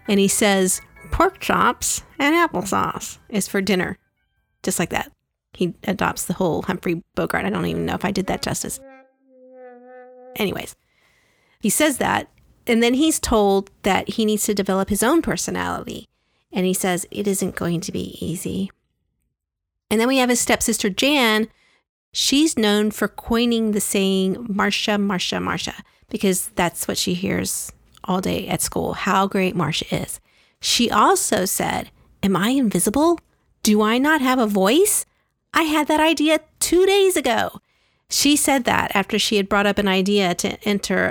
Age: 40-59